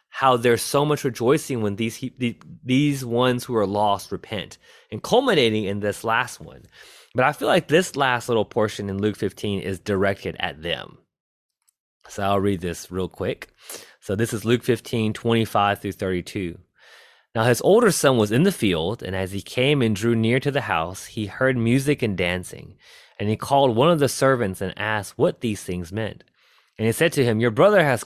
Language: English